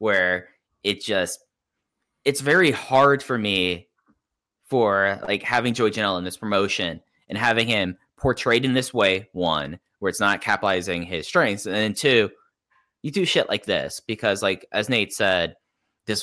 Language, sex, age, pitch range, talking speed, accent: English, male, 10-29, 90-120 Hz, 160 wpm, American